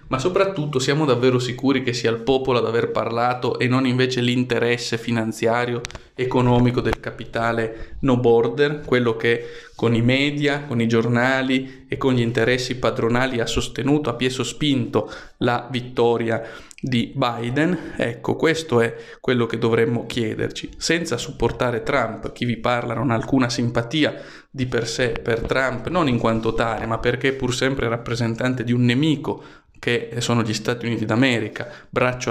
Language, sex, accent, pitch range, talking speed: Italian, male, native, 115-140 Hz, 160 wpm